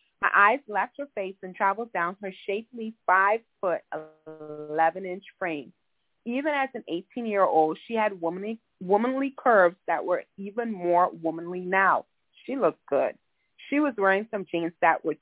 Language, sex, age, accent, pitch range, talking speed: English, female, 30-49, American, 175-220 Hz, 150 wpm